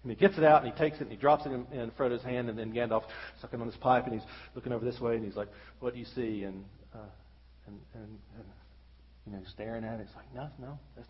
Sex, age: male, 40-59